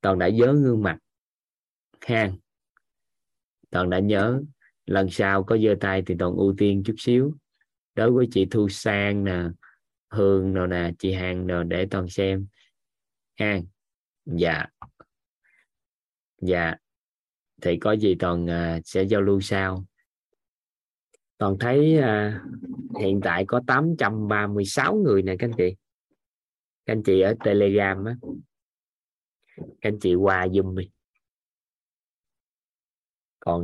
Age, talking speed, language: 20-39, 125 wpm, Vietnamese